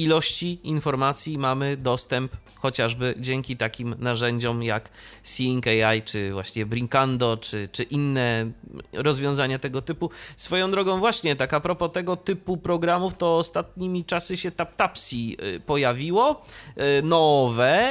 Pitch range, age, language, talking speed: 115-165 Hz, 30-49, Polish, 120 wpm